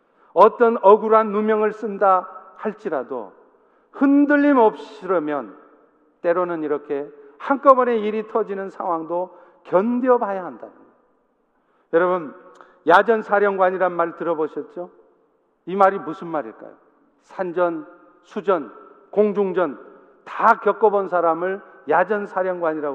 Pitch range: 165-250 Hz